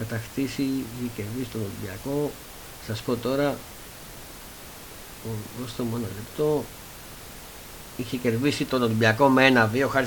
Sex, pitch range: male, 110-135 Hz